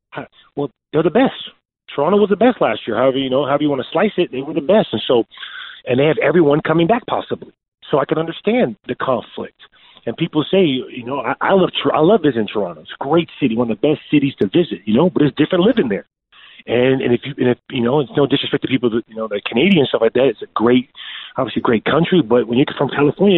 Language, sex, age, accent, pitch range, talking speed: English, male, 40-59, American, 120-170 Hz, 255 wpm